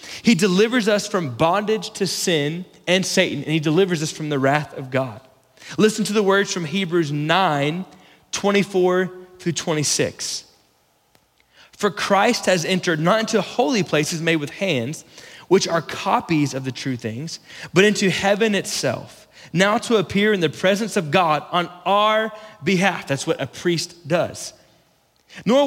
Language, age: English, 20-39